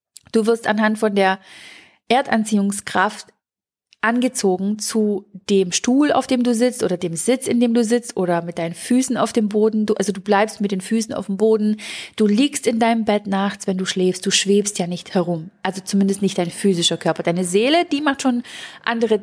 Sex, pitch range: female, 195-230 Hz